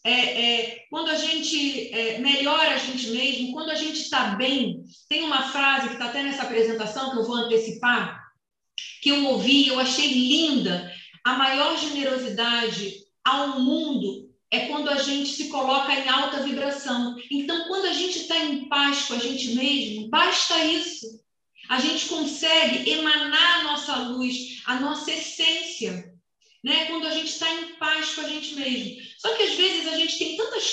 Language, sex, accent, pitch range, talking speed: Portuguese, female, Brazilian, 255-310 Hz, 170 wpm